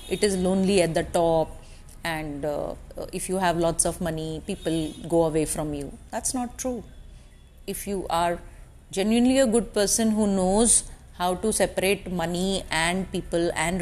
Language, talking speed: English, 165 wpm